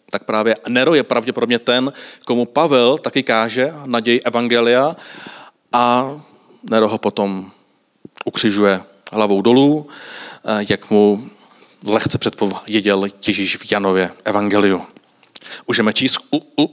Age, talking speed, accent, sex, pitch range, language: 40-59, 110 wpm, native, male, 105-135 Hz, Czech